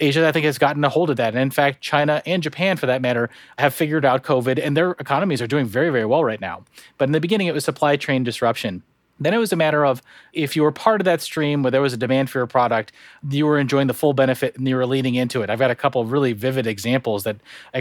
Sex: male